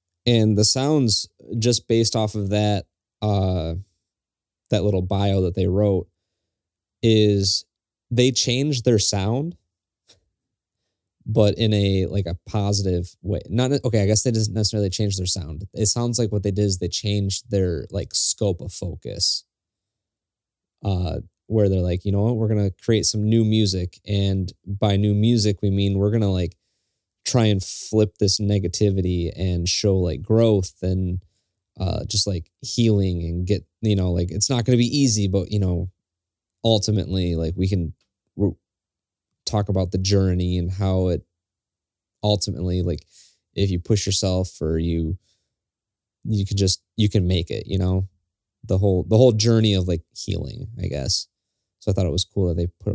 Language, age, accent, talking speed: English, 20-39, American, 170 wpm